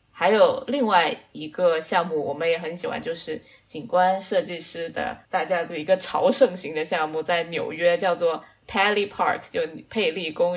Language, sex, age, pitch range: Chinese, female, 20-39, 170-240 Hz